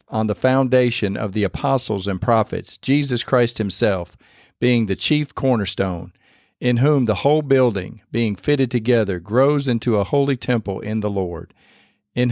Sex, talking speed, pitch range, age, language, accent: male, 155 wpm, 105-135 Hz, 50-69, English, American